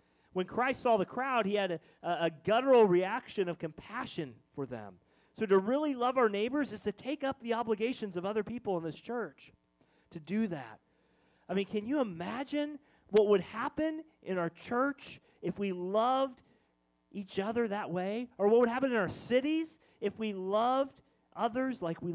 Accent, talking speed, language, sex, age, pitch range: American, 180 wpm, English, male, 40-59, 175-280 Hz